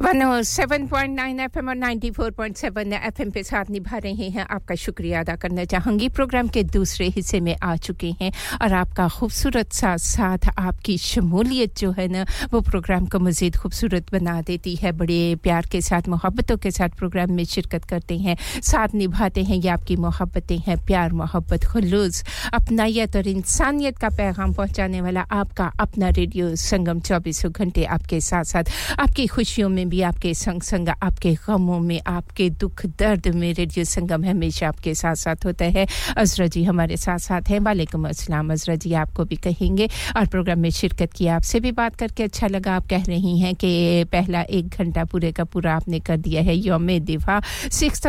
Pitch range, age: 170-210 Hz, 50-69